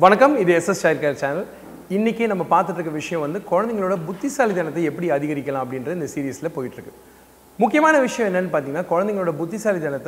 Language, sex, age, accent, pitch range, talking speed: Tamil, male, 30-49, native, 155-210 Hz, 155 wpm